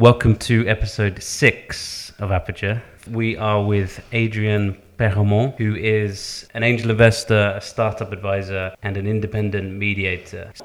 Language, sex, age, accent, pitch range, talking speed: English, male, 30-49, British, 95-110 Hz, 130 wpm